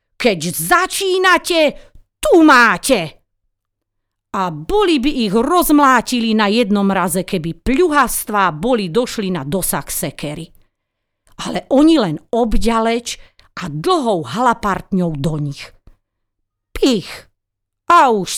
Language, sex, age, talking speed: Slovak, female, 40-59, 100 wpm